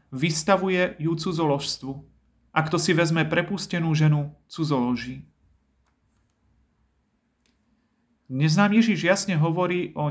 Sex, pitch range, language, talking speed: male, 145-170 Hz, Slovak, 85 wpm